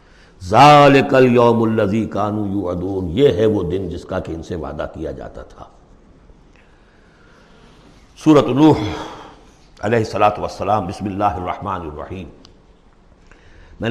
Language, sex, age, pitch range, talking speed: Urdu, male, 60-79, 95-130 Hz, 120 wpm